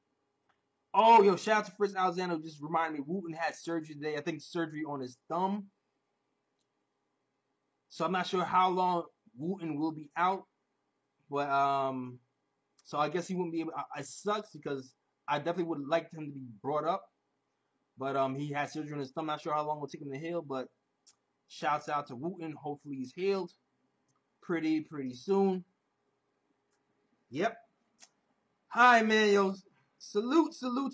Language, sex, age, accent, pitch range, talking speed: English, male, 20-39, American, 140-175 Hz, 170 wpm